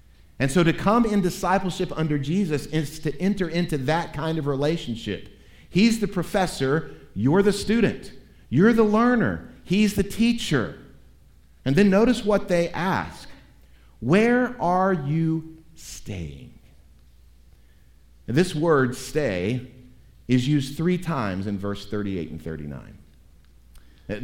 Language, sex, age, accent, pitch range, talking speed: English, male, 50-69, American, 90-150 Hz, 125 wpm